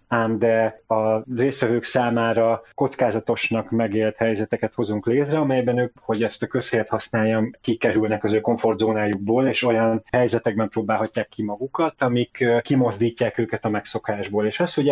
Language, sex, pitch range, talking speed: Hungarian, male, 105-120 Hz, 140 wpm